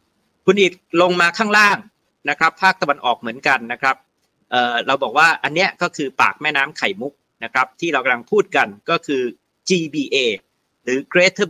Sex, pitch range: male, 140-185 Hz